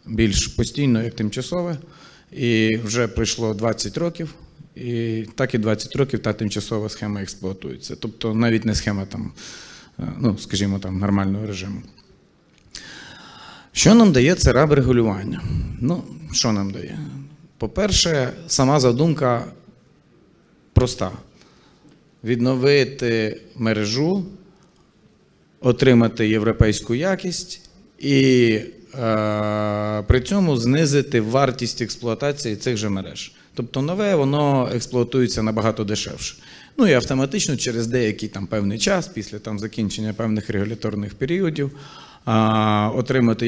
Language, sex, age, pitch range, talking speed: Ukrainian, male, 40-59, 110-140 Hz, 105 wpm